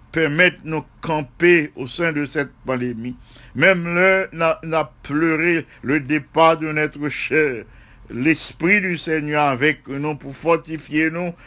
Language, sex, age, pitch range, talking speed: English, male, 60-79, 130-180 Hz, 140 wpm